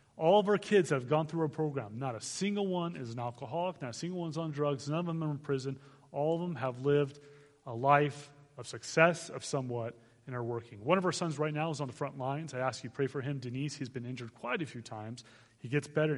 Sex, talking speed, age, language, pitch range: male, 265 wpm, 30-49, English, 130-155 Hz